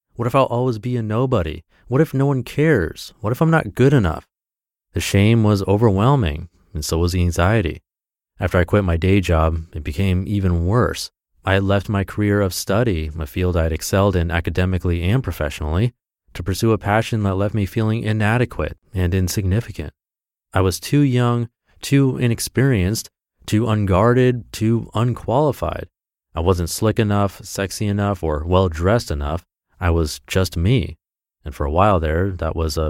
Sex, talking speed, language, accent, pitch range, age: male, 175 wpm, English, American, 85-110 Hz, 30-49